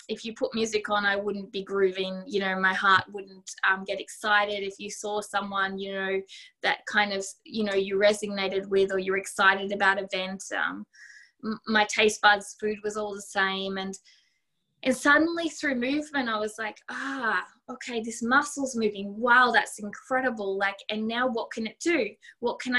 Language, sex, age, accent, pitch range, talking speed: English, female, 20-39, Australian, 205-240 Hz, 185 wpm